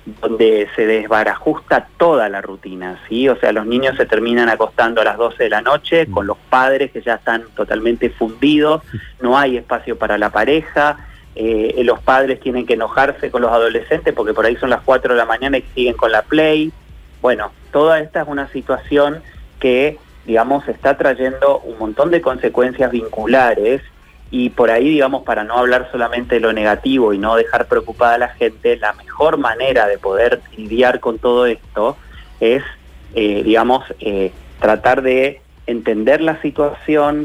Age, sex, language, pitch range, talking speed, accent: 30-49, male, Spanish, 115-145 Hz, 175 wpm, Argentinian